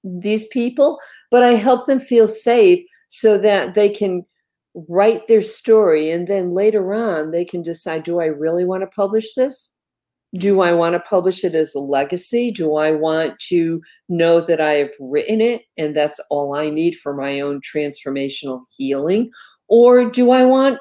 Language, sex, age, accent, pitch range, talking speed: English, female, 50-69, American, 170-240 Hz, 180 wpm